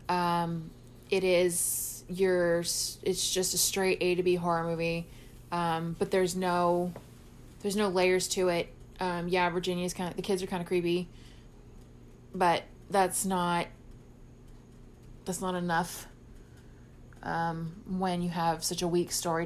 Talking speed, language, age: 145 wpm, English, 20-39